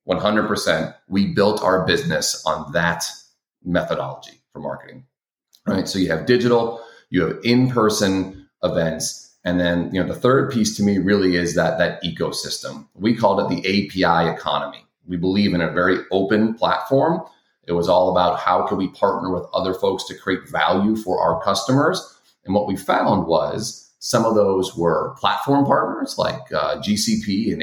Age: 30-49